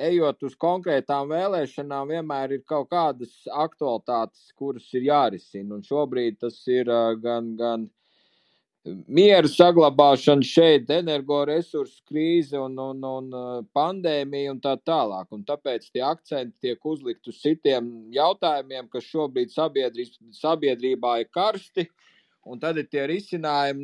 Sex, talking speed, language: male, 125 wpm, English